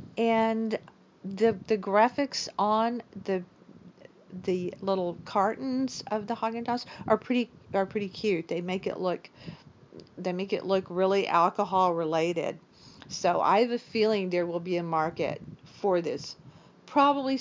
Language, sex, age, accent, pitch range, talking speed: English, female, 50-69, American, 185-230 Hz, 140 wpm